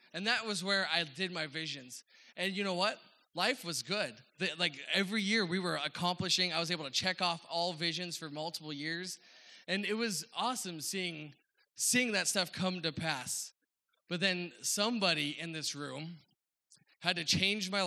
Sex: male